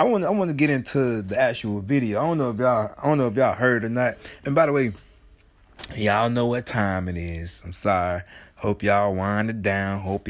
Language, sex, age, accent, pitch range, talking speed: English, male, 30-49, American, 100-125 Hz, 235 wpm